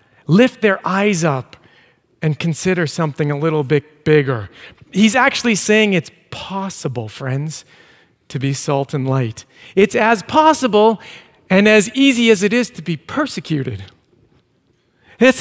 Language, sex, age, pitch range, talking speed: English, male, 40-59, 145-205 Hz, 135 wpm